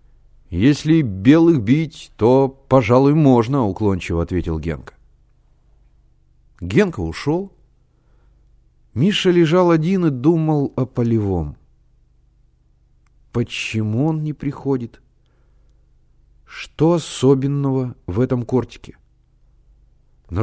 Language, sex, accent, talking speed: Russian, male, native, 80 wpm